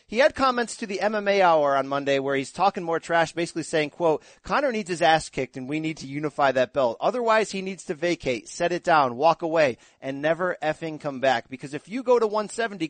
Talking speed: 235 wpm